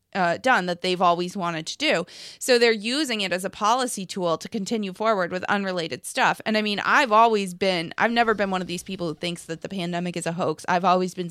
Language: English